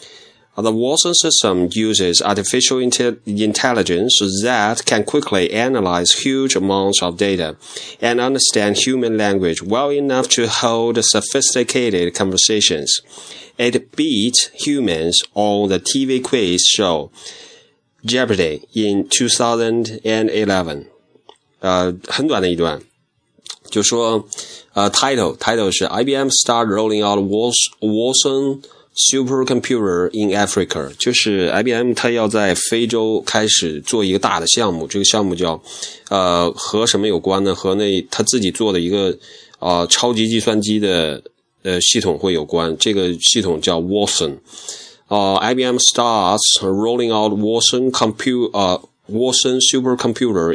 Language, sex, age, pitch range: Chinese, male, 30-49, 95-125 Hz